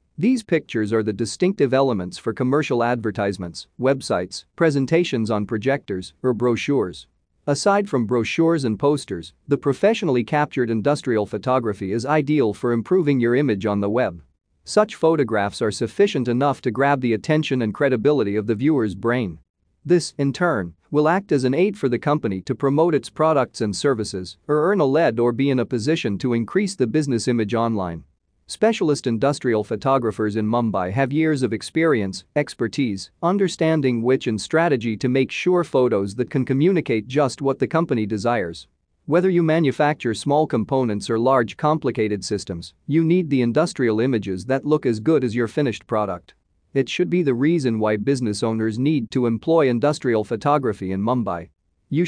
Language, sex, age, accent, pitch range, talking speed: English, male, 40-59, American, 110-150 Hz, 165 wpm